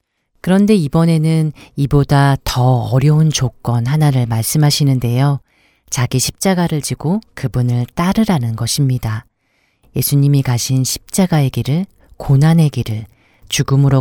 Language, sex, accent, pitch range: Korean, female, native, 120-150 Hz